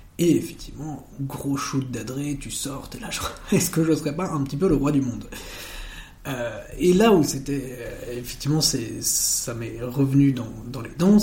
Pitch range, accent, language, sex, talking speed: 120-150 Hz, French, French, male, 200 wpm